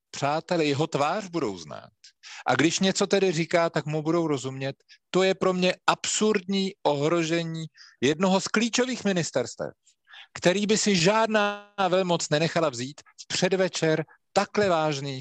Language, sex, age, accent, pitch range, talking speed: Czech, male, 50-69, native, 145-190 Hz, 135 wpm